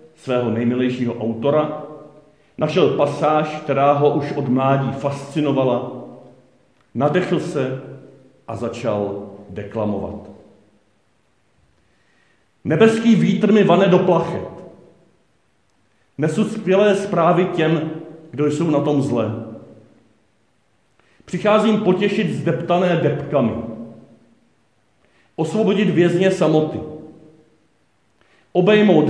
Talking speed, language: 80 wpm, Czech